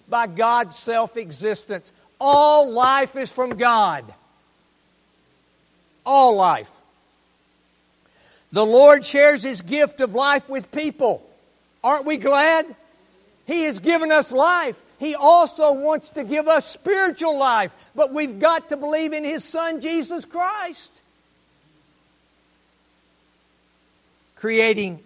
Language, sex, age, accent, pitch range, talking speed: English, male, 60-79, American, 190-280 Hz, 110 wpm